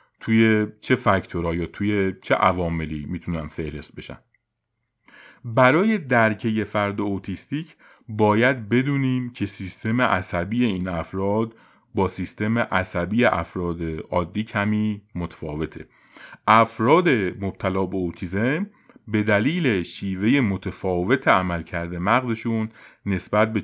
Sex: male